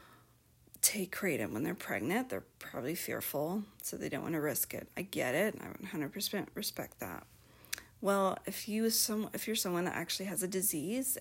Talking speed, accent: 185 wpm, American